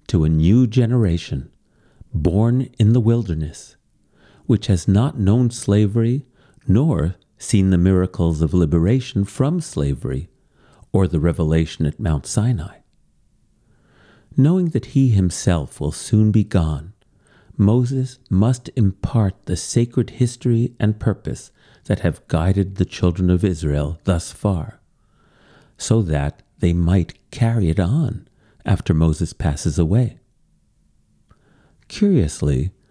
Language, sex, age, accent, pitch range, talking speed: English, male, 50-69, American, 85-120 Hz, 115 wpm